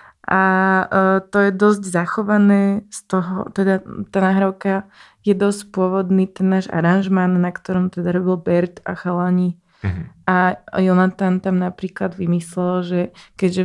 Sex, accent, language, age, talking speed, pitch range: female, native, Czech, 20-39, 135 wpm, 180-195 Hz